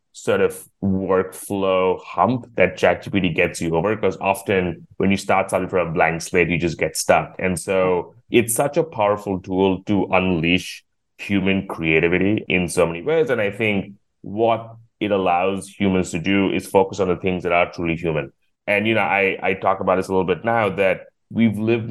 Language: English